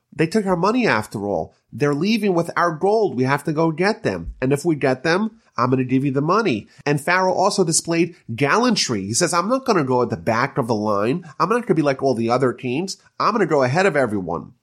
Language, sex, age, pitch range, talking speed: English, male, 30-49, 120-170 Hz, 265 wpm